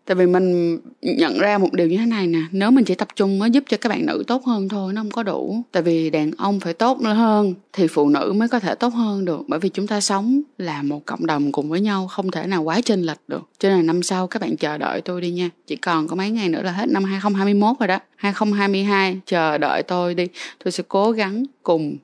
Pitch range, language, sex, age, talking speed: 175-225 Hz, Vietnamese, female, 20-39, 265 wpm